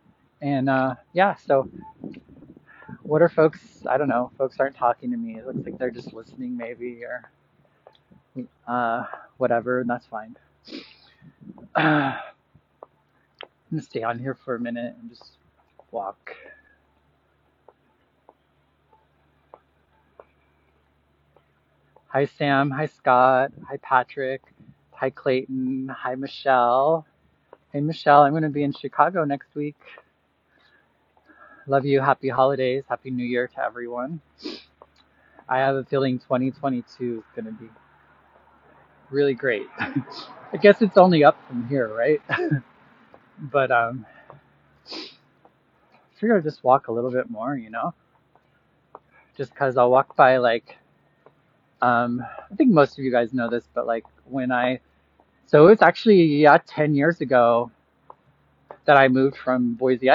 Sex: male